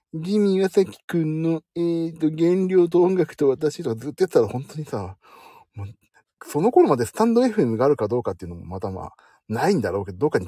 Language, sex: Japanese, male